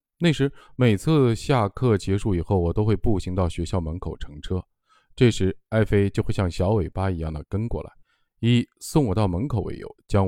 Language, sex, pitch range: Chinese, male, 85-120 Hz